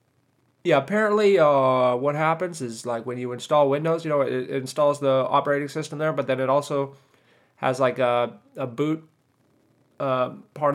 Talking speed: 170 wpm